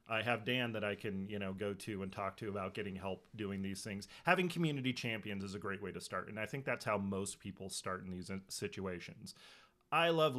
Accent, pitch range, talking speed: American, 100-125 Hz, 235 wpm